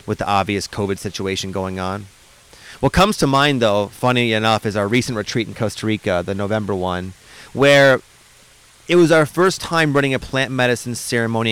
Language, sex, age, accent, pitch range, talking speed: English, male, 30-49, American, 115-155 Hz, 180 wpm